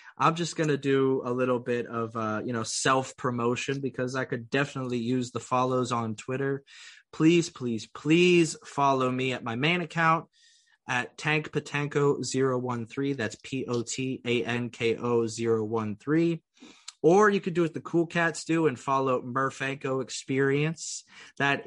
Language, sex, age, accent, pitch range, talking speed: English, male, 30-49, American, 120-145 Hz, 135 wpm